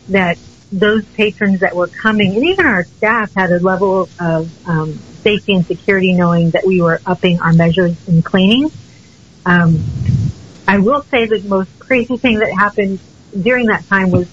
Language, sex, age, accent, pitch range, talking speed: English, female, 40-59, American, 175-215 Hz, 170 wpm